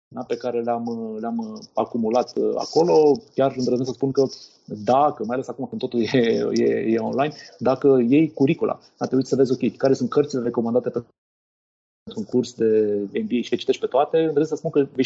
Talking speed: 195 wpm